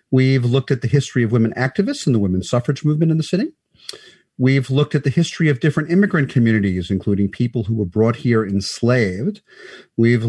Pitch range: 110-160 Hz